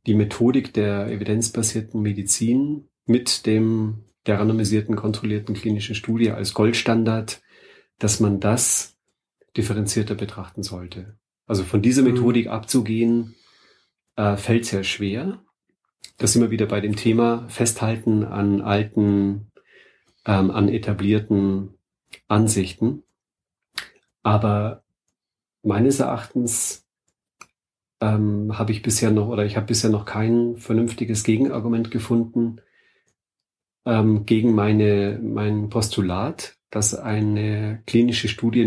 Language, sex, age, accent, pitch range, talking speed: German, male, 40-59, German, 100-115 Hz, 105 wpm